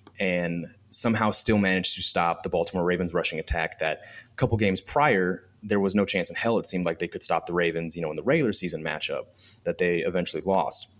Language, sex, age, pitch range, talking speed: English, male, 20-39, 90-110 Hz, 225 wpm